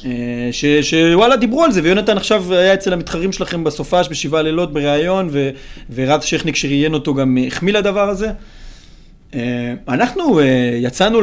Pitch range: 130-180 Hz